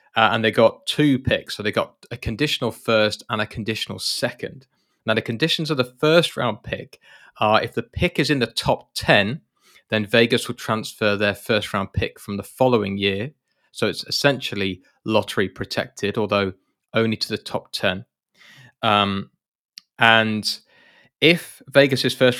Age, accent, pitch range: 20-39, British, 105-125 Hz